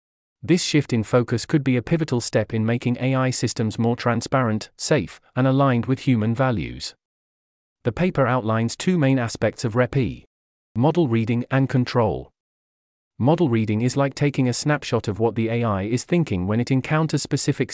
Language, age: English, 40-59